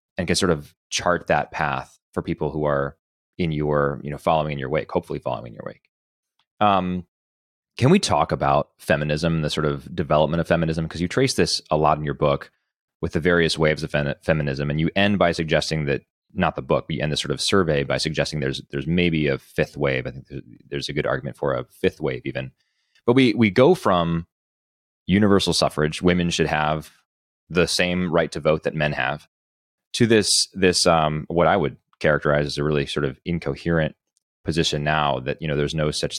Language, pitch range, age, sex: English, 70-85 Hz, 30-49, male